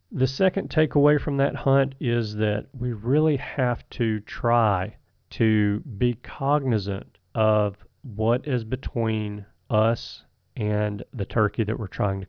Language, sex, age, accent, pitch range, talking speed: English, male, 40-59, American, 110-130 Hz, 135 wpm